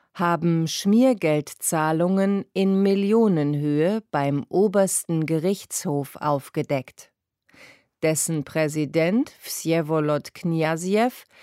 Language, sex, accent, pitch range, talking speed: English, female, German, 145-190 Hz, 65 wpm